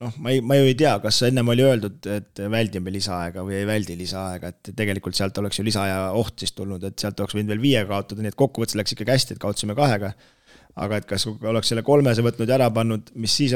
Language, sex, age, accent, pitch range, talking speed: English, male, 20-39, Finnish, 105-120 Hz, 230 wpm